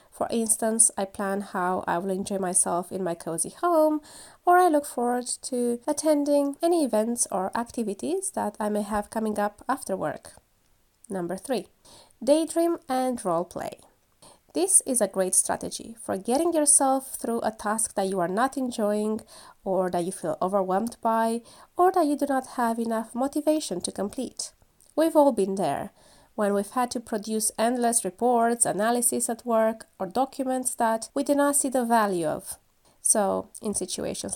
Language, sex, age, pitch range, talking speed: English, female, 20-39, 210-290 Hz, 170 wpm